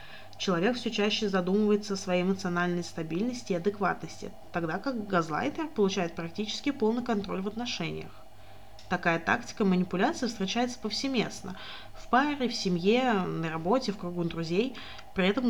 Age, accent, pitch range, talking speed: 20-39, native, 180-225 Hz, 135 wpm